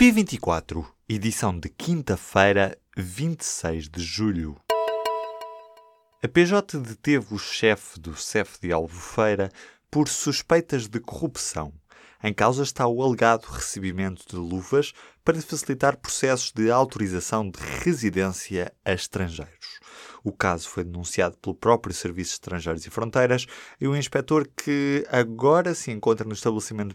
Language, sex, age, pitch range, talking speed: Portuguese, male, 20-39, 95-130 Hz, 125 wpm